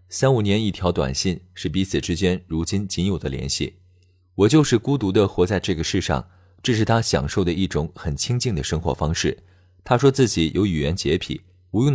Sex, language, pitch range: male, Chinese, 85-110 Hz